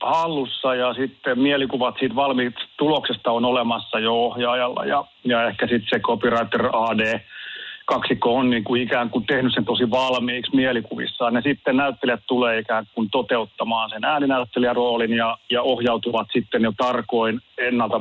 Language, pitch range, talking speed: Finnish, 115-135 Hz, 150 wpm